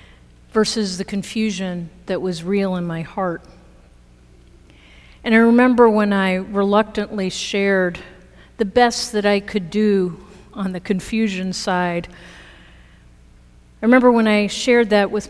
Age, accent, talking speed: 50-69, American, 130 wpm